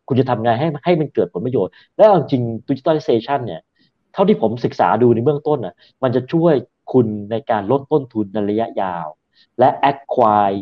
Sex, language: male, Thai